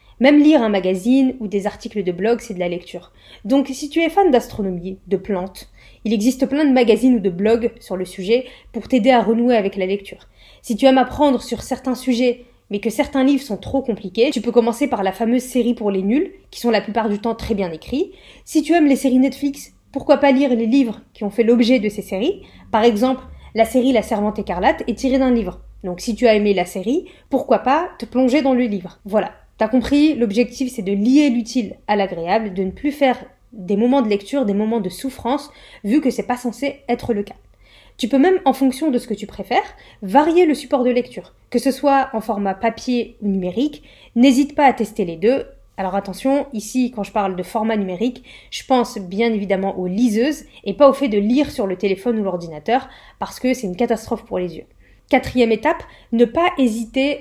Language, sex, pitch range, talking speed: French, female, 205-265 Hz, 225 wpm